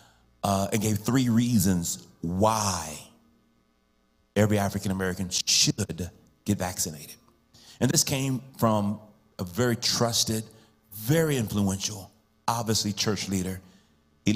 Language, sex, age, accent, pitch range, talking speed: English, male, 30-49, American, 95-110 Hz, 105 wpm